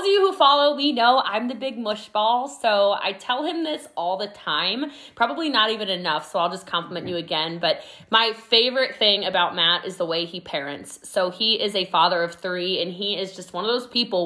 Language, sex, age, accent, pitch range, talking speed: English, female, 20-39, American, 190-255 Hz, 225 wpm